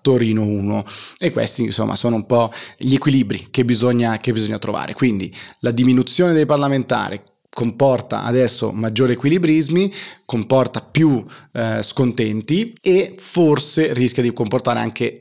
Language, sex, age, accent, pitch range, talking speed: Italian, male, 30-49, native, 110-130 Hz, 130 wpm